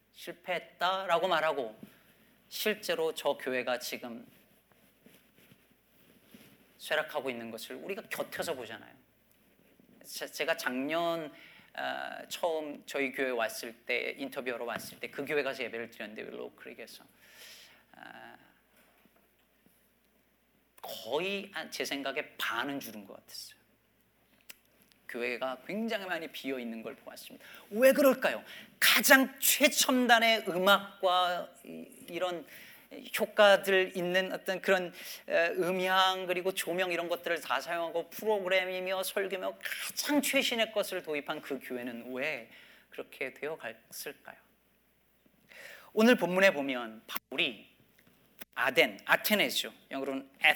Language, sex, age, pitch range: Korean, male, 40-59, 135-195 Hz